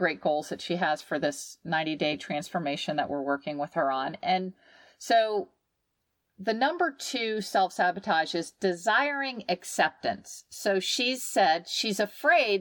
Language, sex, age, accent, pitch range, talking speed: English, female, 50-69, American, 175-220 Hz, 140 wpm